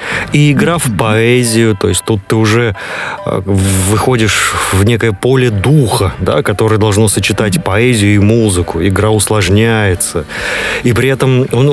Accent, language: native, Russian